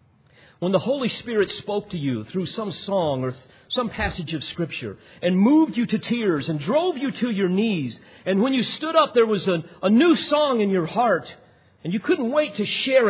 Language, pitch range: English, 145-220 Hz